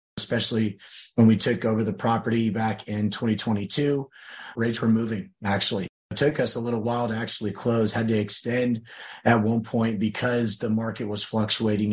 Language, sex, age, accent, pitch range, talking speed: English, male, 30-49, American, 110-120 Hz, 170 wpm